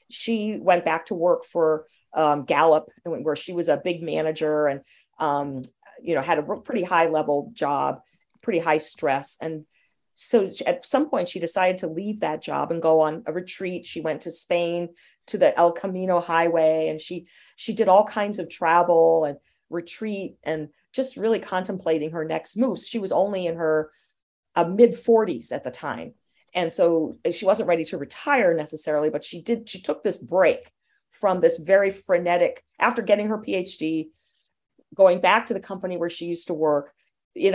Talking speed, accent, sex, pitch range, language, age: 180 wpm, American, female, 160-215 Hz, English, 40-59